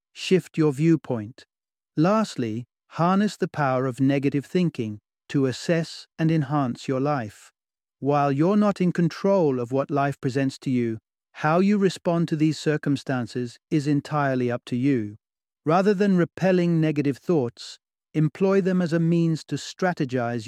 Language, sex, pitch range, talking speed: English, male, 130-165 Hz, 145 wpm